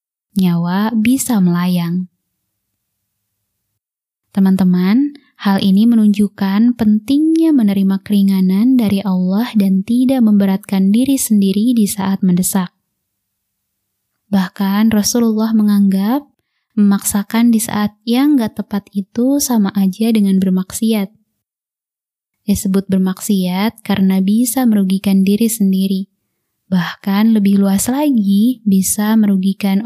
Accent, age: native, 20-39